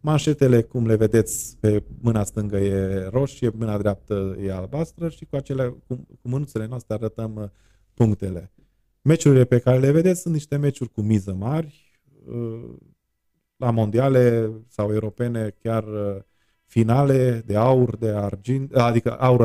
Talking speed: 150 wpm